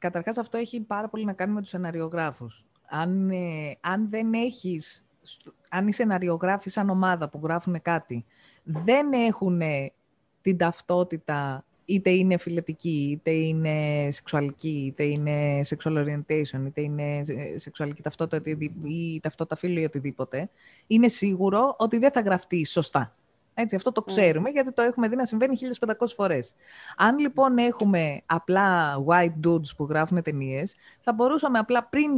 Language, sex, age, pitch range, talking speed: Greek, female, 20-39, 155-235 Hz, 140 wpm